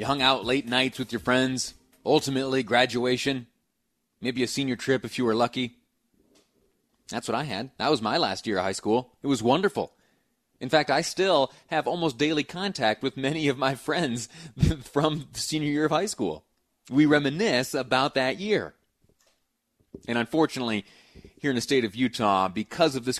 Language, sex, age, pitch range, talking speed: English, male, 30-49, 105-130 Hz, 175 wpm